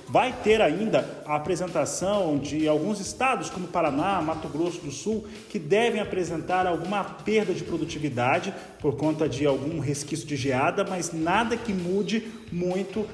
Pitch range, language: 165-205 Hz, Portuguese